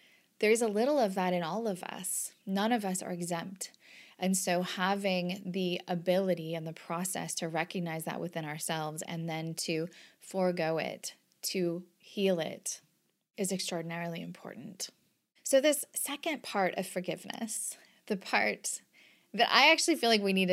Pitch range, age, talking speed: 170-205 Hz, 20-39, 160 wpm